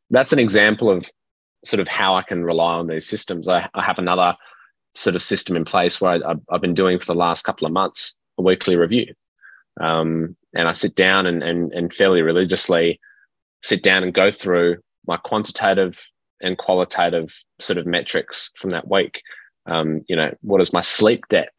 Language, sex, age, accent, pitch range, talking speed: English, male, 20-39, Australian, 85-95 Hz, 190 wpm